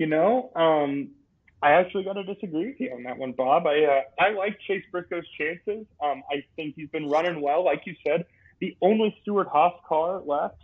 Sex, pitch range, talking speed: male, 145-195 Hz, 210 wpm